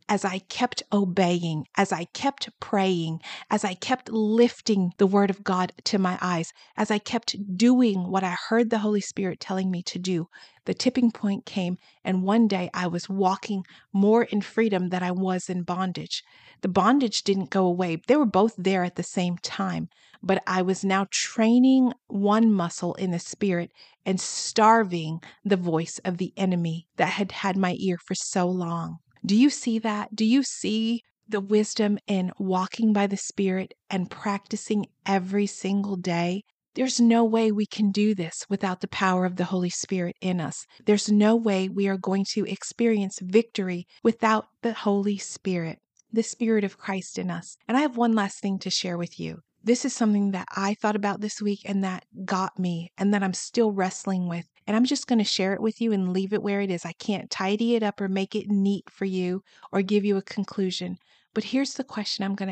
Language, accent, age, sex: English, American, 40-59, female